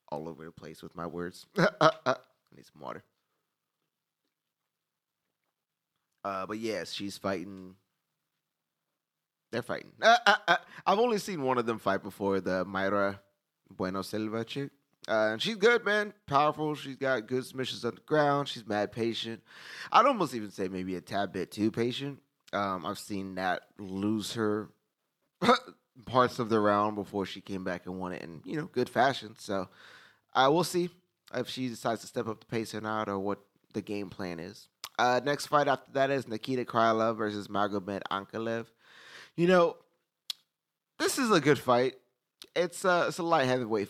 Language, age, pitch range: English, 30-49, 95-130 Hz